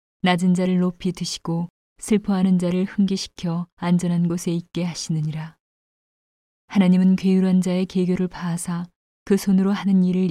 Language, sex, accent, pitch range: Korean, female, native, 170-185 Hz